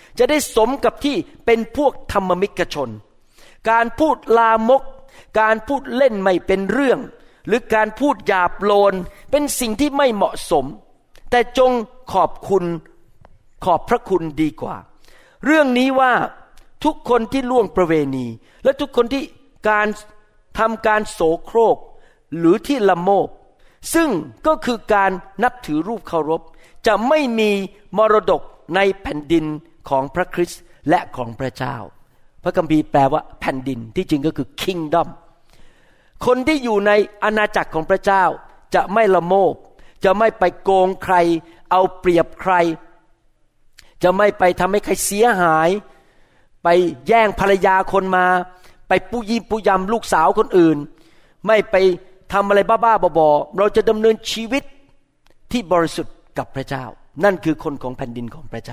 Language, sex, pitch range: Thai, male, 170-230 Hz